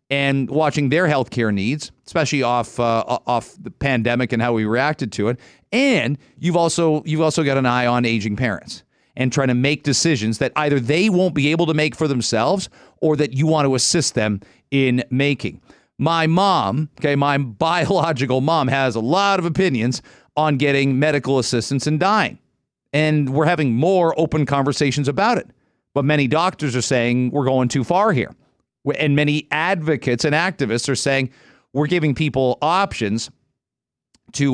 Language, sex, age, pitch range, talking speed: English, male, 40-59, 125-155 Hz, 170 wpm